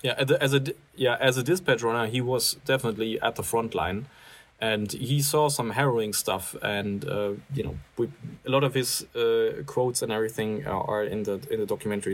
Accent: German